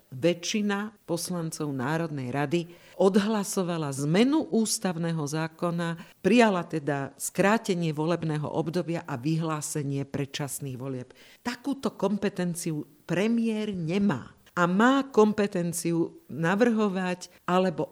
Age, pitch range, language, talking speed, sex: 50-69, 150-195 Hz, Slovak, 85 wpm, female